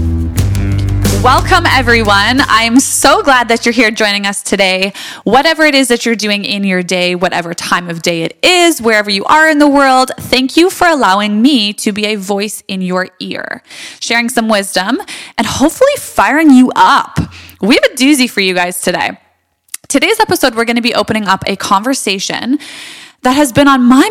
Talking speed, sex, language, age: 185 wpm, female, English, 20-39